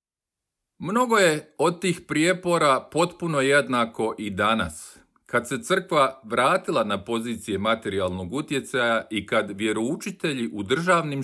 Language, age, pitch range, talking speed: Croatian, 40-59, 115-165 Hz, 115 wpm